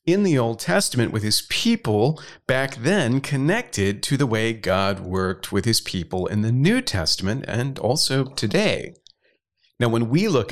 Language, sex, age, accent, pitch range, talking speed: English, male, 40-59, American, 100-135 Hz, 165 wpm